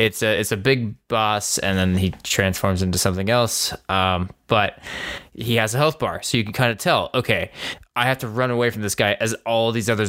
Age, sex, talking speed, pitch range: 20-39, male, 230 wpm, 95-115 Hz